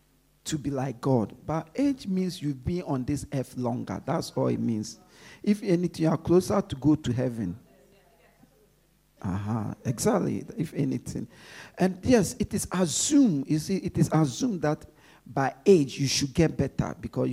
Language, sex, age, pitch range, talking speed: English, male, 50-69, 135-185 Hz, 170 wpm